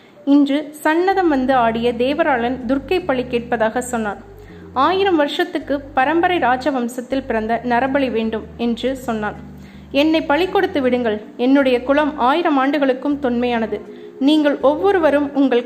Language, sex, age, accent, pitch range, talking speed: Tamil, female, 20-39, native, 245-295 Hz, 110 wpm